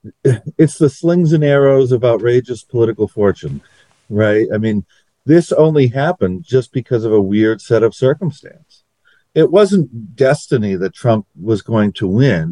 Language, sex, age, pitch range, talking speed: English, male, 50-69, 100-130 Hz, 155 wpm